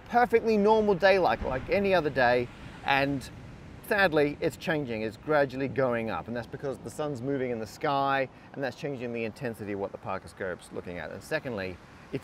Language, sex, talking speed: English, male, 190 wpm